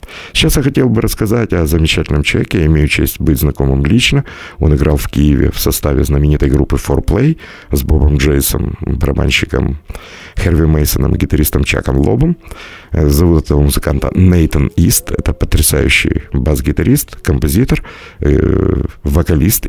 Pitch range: 75-100 Hz